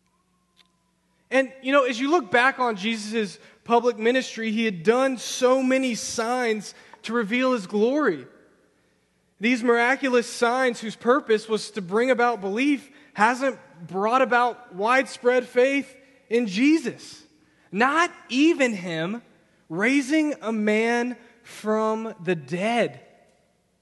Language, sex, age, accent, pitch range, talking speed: English, male, 20-39, American, 185-250 Hz, 120 wpm